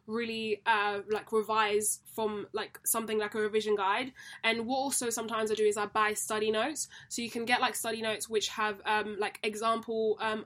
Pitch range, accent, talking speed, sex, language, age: 215-235 Hz, British, 200 wpm, female, English, 10-29